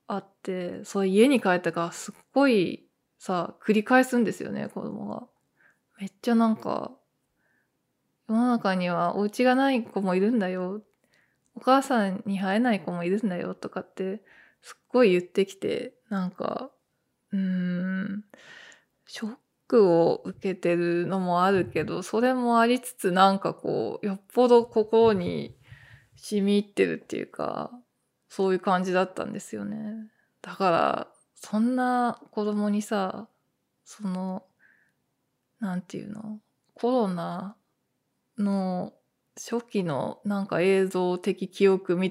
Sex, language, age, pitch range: female, Japanese, 20-39, 185-235 Hz